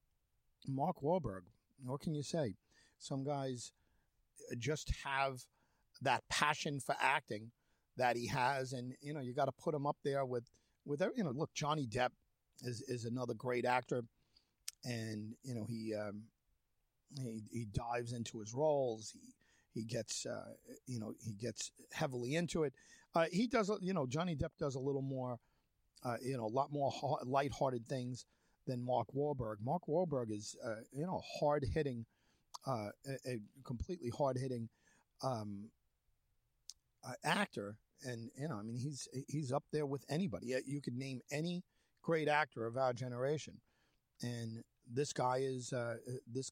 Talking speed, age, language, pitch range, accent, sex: 165 wpm, 50-69, English, 120-145 Hz, American, male